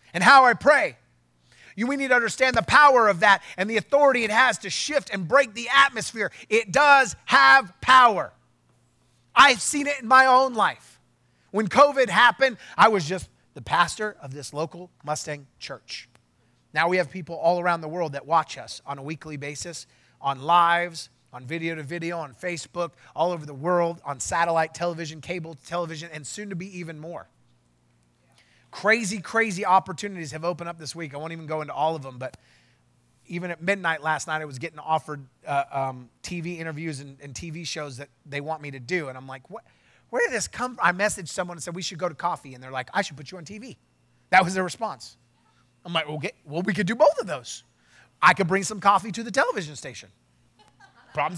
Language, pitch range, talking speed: English, 145-210 Hz, 205 wpm